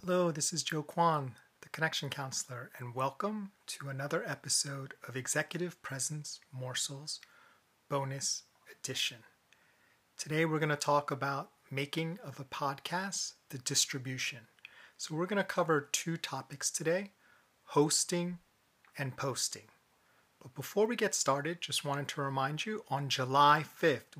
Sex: male